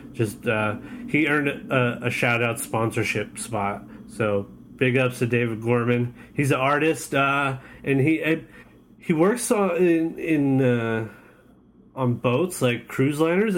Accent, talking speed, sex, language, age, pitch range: American, 145 wpm, male, English, 30-49, 120-145 Hz